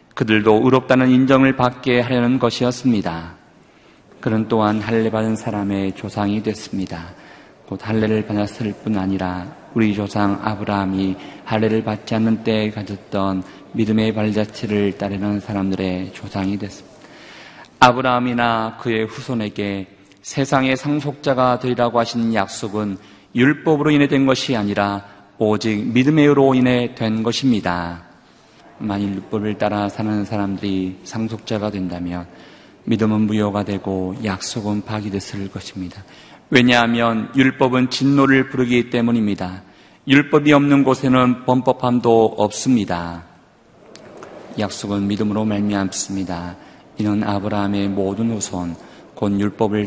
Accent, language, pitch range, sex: native, Korean, 100-120 Hz, male